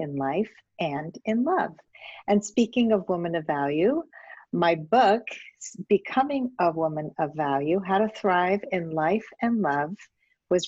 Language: English